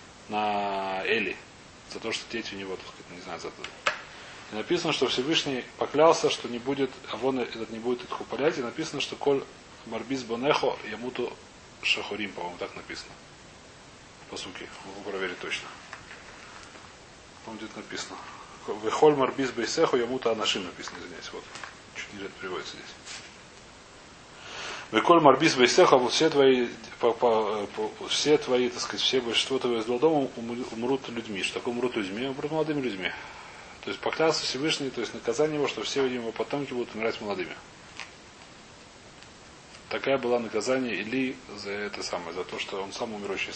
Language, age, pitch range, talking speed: Russian, 20-39, 115-140 Hz, 150 wpm